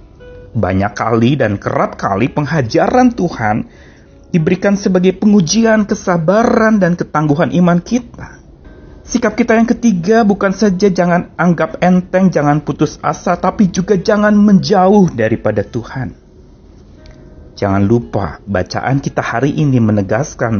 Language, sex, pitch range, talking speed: Indonesian, male, 120-185 Hz, 115 wpm